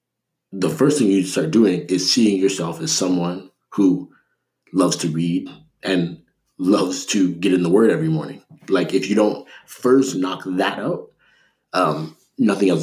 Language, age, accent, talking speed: English, 30-49, American, 165 wpm